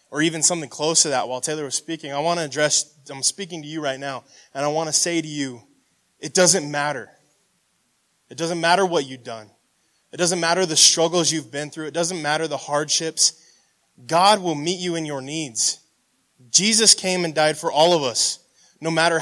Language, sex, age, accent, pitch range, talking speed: English, male, 20-39, American, 145-175 Hz, 205 wpm